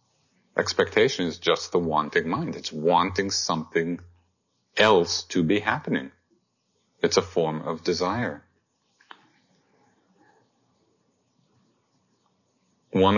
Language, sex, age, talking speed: English, male, 50-69, 85 wpm